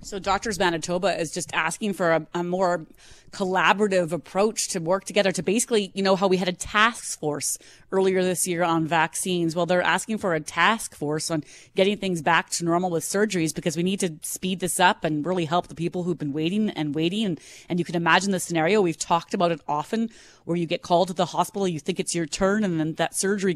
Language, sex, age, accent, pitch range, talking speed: English, female, 30-49, American, 160-195 Hz, 230 wpm